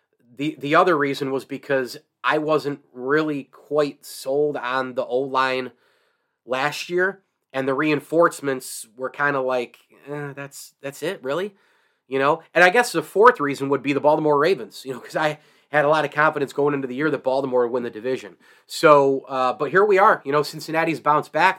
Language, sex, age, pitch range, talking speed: English, male, 30-49, 135-160 Hz, 200 wpm